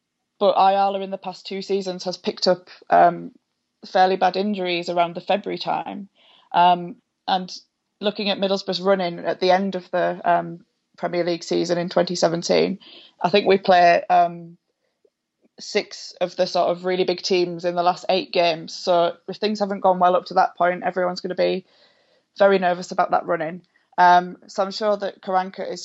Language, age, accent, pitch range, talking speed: English, 20-39, British, 180-195 Hz, 185 wpm